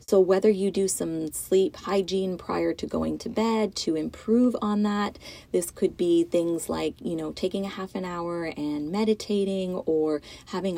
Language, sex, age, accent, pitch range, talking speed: English, female, 30-49, American, 170-210 Hz, 180 wpm